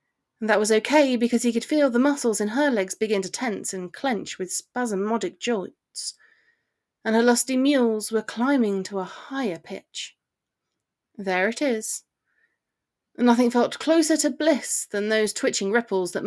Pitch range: 205-250 Hz